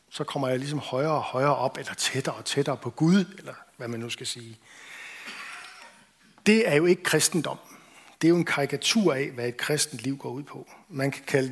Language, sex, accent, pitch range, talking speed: Danish, male, native, 130-170 Hz, 215 wpm